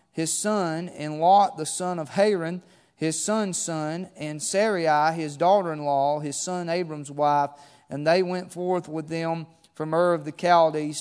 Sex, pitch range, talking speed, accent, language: male, 160-190 Hz, 165 wpm, American, English